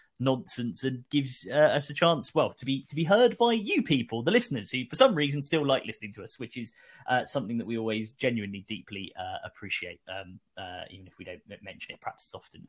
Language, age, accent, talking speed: English, 20-39, British, 230 wpm